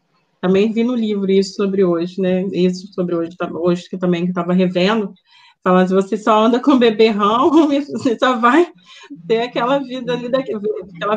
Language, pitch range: Portuguese, 200-285 Hz